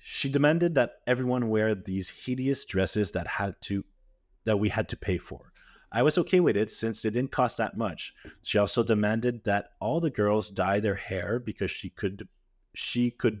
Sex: male